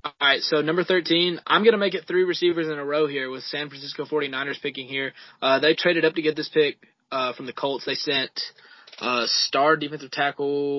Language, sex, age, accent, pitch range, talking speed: English, male, 20-39, American, 135-170 Hz, 220 wpm